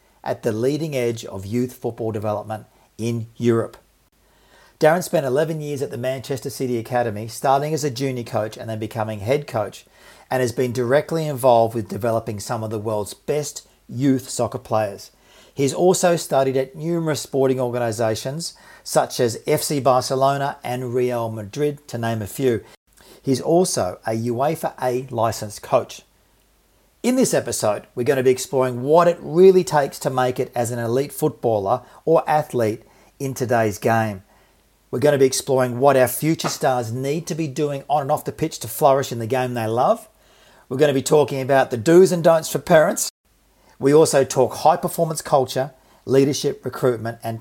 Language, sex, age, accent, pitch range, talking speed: English, male, 40-59, Australian, 115-150 Hz, 175 wpm